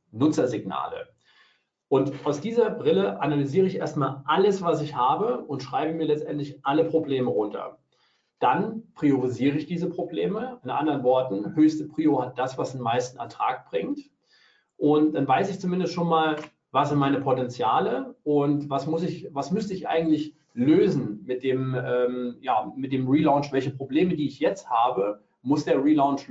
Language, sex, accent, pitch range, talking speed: German, male, German, 125-160 Hz, 165 wpm